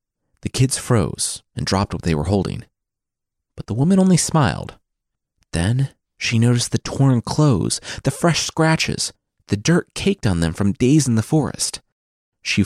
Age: 30-49